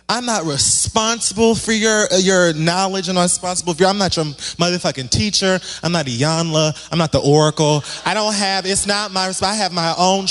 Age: 20-39